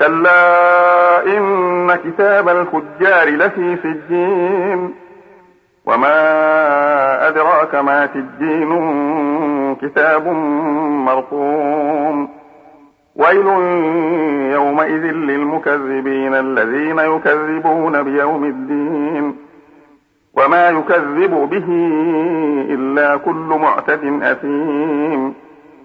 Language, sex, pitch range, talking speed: Arabic, male, 145-175 Hz, 65 wpm